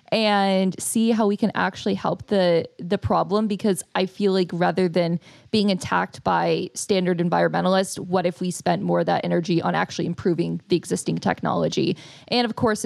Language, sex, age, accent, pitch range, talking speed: English, female, 20-39, American, 170-195 Hz, 175 wpm